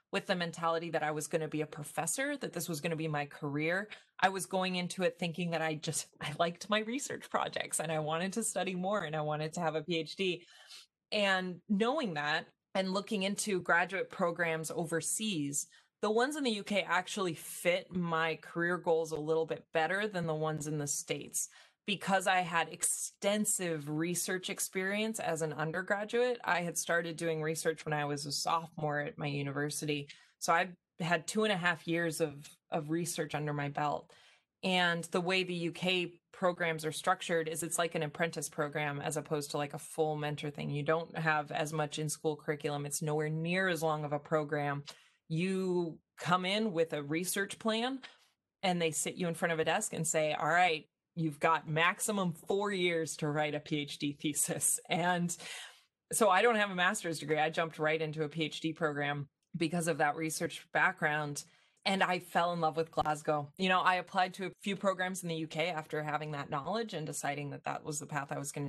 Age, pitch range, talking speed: 20-39, 155-185 Hz, 200 wpm